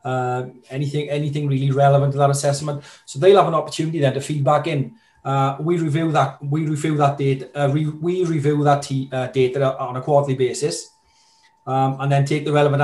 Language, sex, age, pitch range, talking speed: English, male, 30-49, 130-150 Hz, 200 wpm